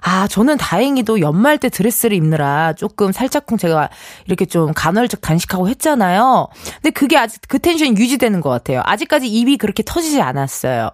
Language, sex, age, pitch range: Korean, female, 20-39, 185-300 Hz